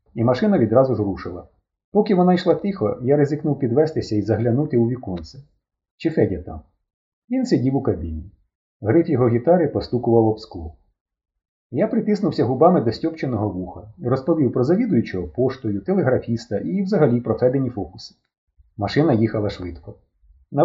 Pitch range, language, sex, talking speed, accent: 100-165 Hz, Ukrainian, male, 140 wpm, native